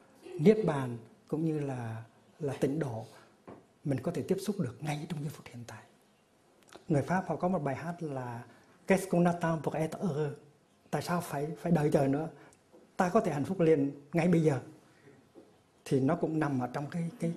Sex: male